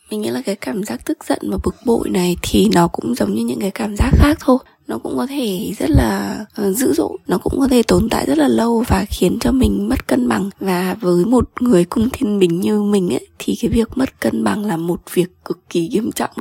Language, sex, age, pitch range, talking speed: Vietnamese, female, 20-39, 180-235 Hz, 255 wpm